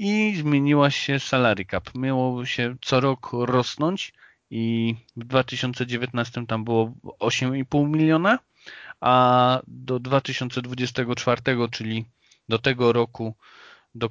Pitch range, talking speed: 115-130 Hz, 105 wpm